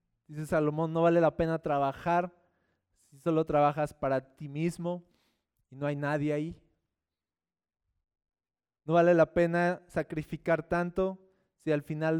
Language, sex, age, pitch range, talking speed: Spanish, male, 20-39, 150-190 Hz, 135 wpm